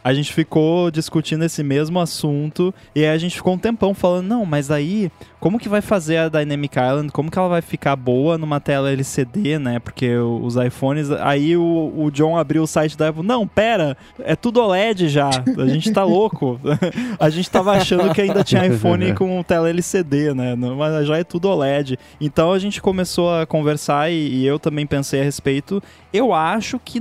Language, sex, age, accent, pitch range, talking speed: Portuguese, male, 20-39, Brazilian, 140-180 Hz, 195 wpm